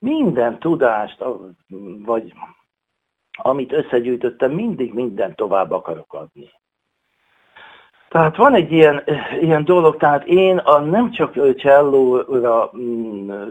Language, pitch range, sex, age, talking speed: Hungarian, 115-150 Hz, male, 60-79, 100 wpm